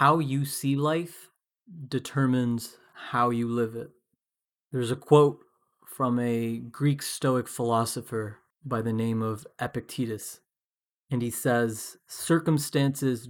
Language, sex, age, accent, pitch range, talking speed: English, male, 20-39, American, 120-145 Hz, 115 wpm